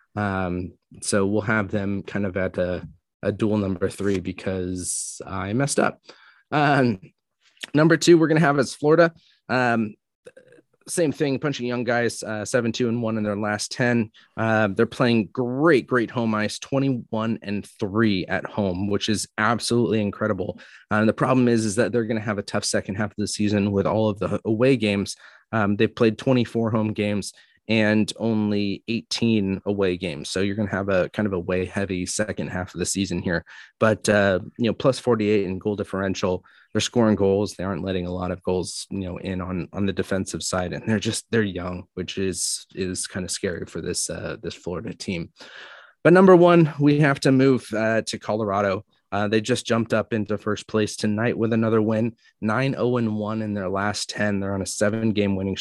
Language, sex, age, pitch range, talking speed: English, male, 30-49, 95-115 Hz, 200 wpm